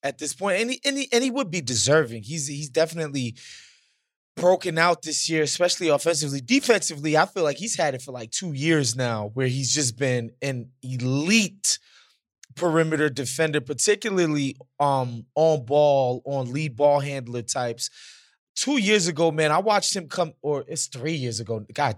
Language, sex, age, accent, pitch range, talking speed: English, male, 20-39, American, 130-180 Hz, 175 wpm